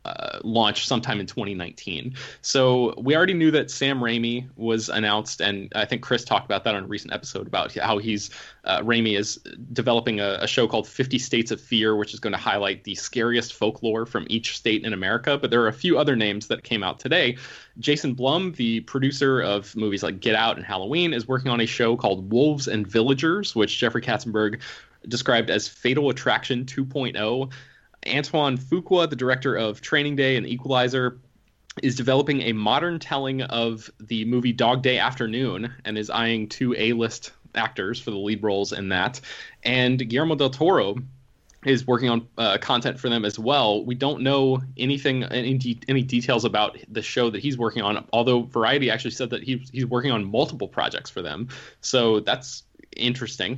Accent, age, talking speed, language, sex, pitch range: American, 20-39, 185 wpm, English, male, 110-130 Hz